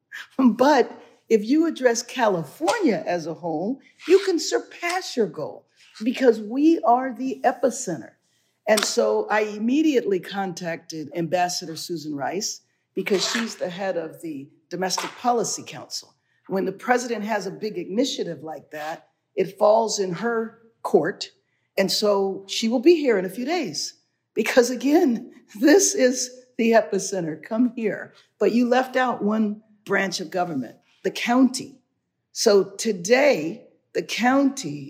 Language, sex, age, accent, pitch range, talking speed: English, female, 50-69, American, 175-245 Hz, 140 wpm